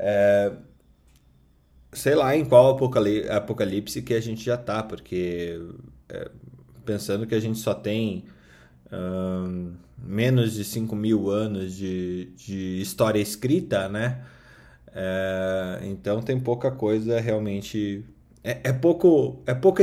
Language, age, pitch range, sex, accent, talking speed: Portuguese, 20-39, 100-125 Hz, male, Brazilian, 120 wpm